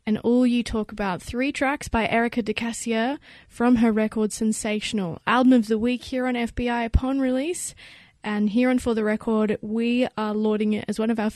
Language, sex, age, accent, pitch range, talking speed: English, female, 20-39, Australian, 210-245 Hz, 195 wpm